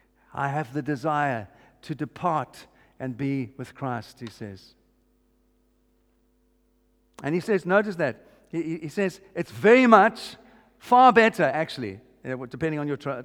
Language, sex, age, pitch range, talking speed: English, male, 50-69, 155-200 Hz, 135 wpm